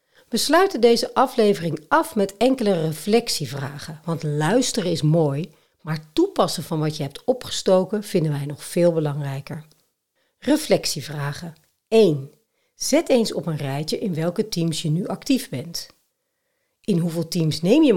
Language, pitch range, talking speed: Dutch, 155-245 Hz, 145 wpm